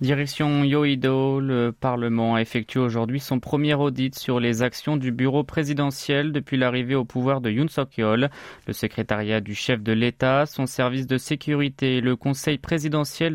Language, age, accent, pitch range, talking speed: French, 20-39, French, 120-145 Hz, 165 wpm